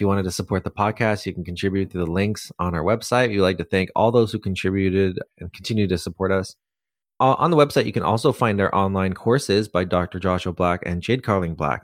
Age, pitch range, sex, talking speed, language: 30-49, 90-110 Hz, male, 245 wpm, English